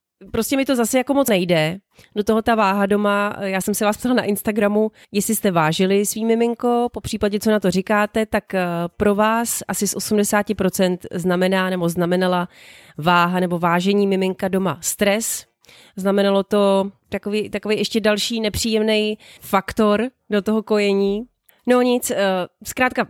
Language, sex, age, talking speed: Czech, female, 30-49, 155 wpm